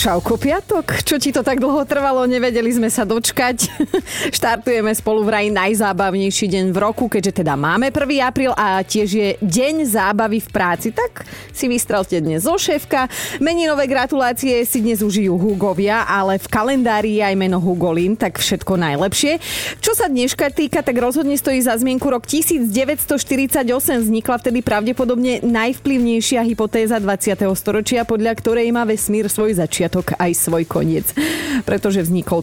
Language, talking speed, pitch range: Slovak, 150 wpm, 195-255 Hz